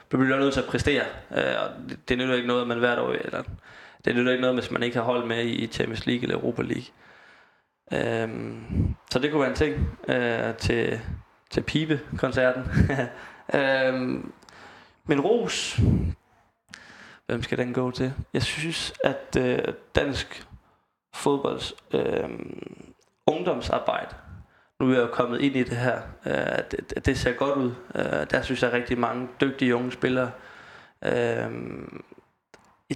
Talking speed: 140 wpm